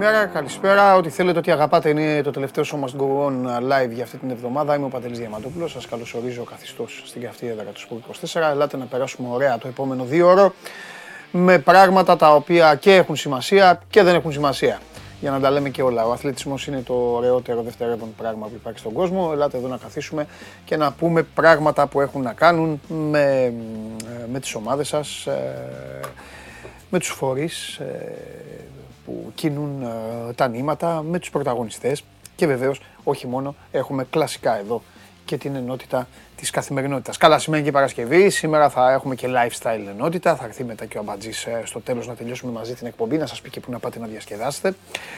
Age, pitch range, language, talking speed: 30-49, 125-165 Hz, Greek, 180 wpm